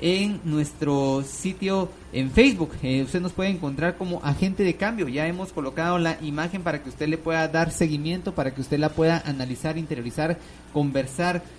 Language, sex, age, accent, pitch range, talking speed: Spanish, male, 30-49, Mexican, 135-165 Hz, 175 wpm